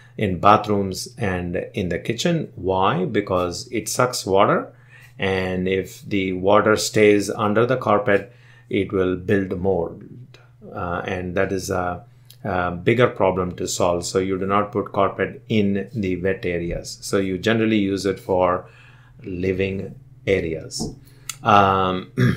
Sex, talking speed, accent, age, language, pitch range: male, 140 wpm, Indian, 30-49, English, 95-125 Hz